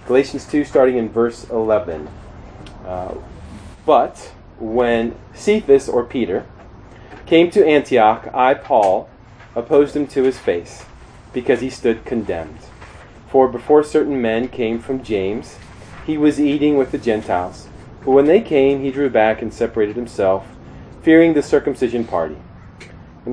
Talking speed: 140 wpm